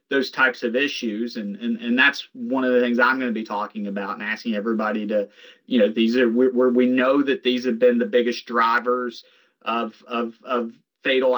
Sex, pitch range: male, 115-130 Hz